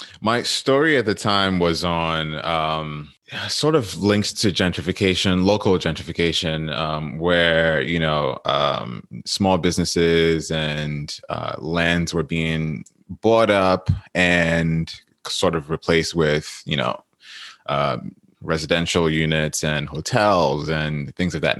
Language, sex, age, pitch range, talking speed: English, male, 20-39, 80-90 Hz, 125 wpm